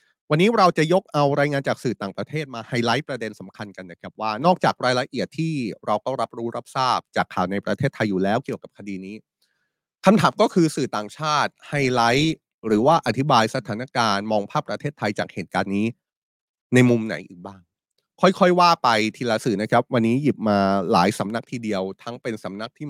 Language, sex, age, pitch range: Thai, male, 30-49, 110-155 Hz